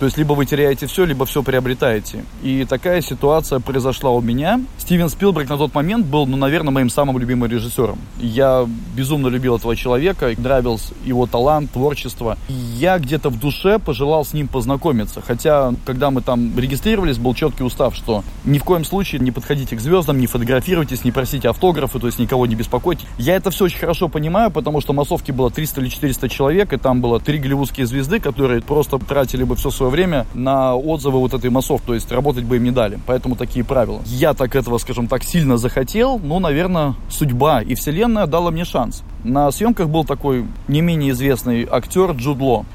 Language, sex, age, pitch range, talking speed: Russian, male, 20-39, 125-155 Hz, 190 wpm